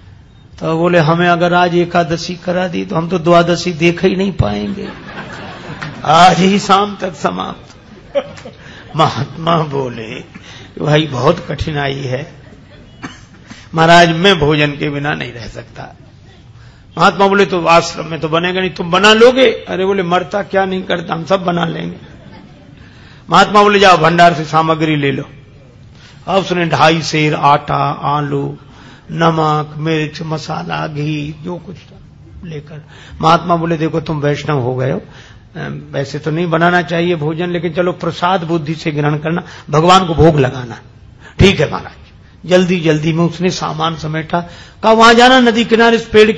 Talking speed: 150 wpm